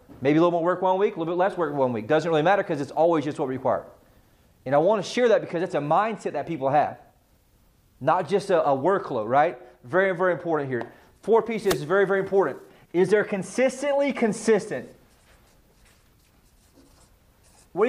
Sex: male